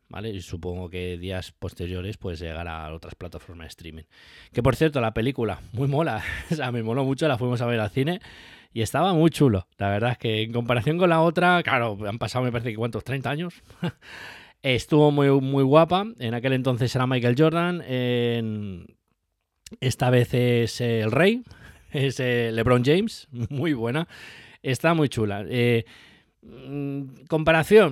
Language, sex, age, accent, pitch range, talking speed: Spanish, male, 20-39, Spanish, 110-150 Hz, 170 wpm